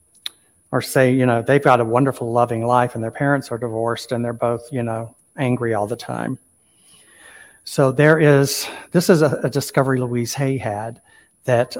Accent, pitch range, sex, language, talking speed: American, 115-140 Hz, male, English, 185 wpm